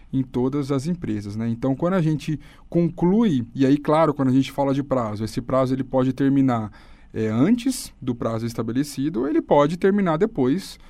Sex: male